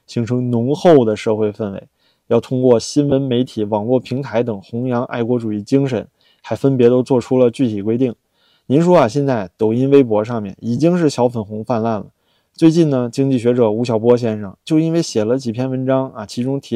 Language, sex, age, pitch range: Chinese, male, 20-39, 115-150 Hz